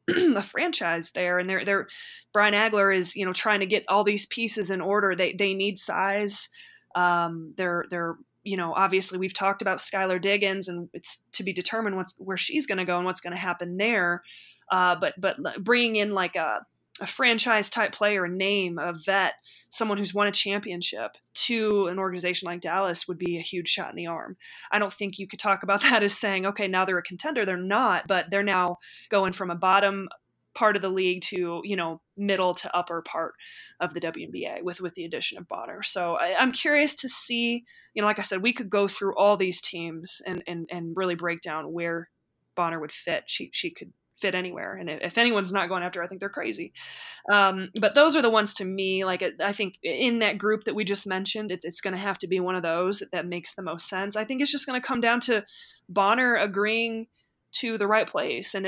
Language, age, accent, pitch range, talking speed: English, 20-39, American, 180-215 Hz, 225 wpm